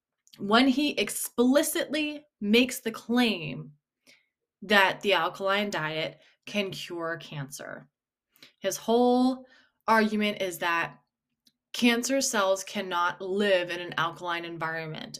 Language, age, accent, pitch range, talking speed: English, 20-39, American, 180-235 Hz, 105 wpm